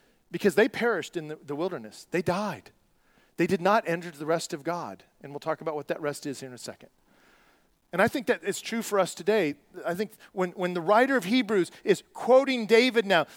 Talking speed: 220 wpm